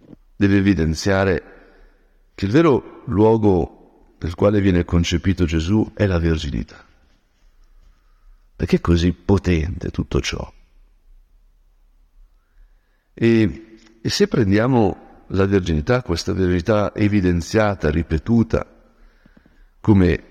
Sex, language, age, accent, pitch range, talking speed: male, Italian, 60-79, native, 80-105 Hz, 90 wpm